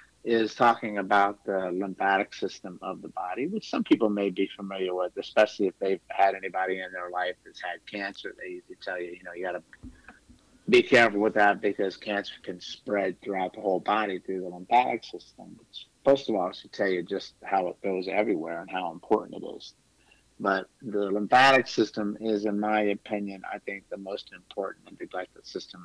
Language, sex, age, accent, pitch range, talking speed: English, male, 50-69, American, 95-115 Hz, 195 wpm